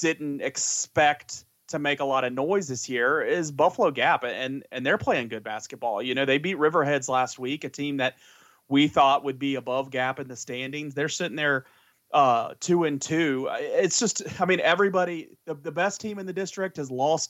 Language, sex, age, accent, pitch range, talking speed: English, male, 30-49, American, 130-165 Hz, 205 wpm